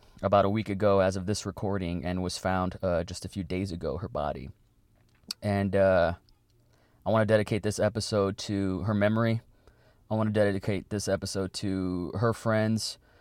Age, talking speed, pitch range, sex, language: 20-39, 175 wpm, 95-110 Hz, male, English